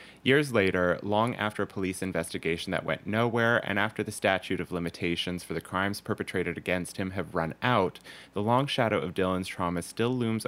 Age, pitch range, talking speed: 30-49, 90-115 Hz, 190 wpm